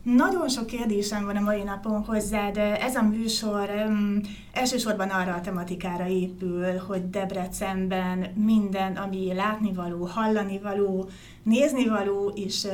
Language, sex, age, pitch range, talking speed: Hungarian, female, 30-49, 190-215 Hz, 130 wpm